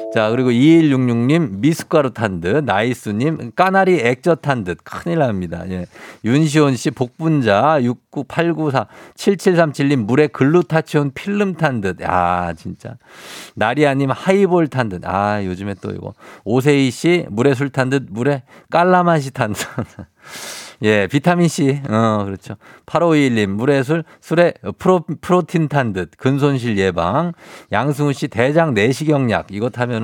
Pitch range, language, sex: 110-155 Hz, Korean, male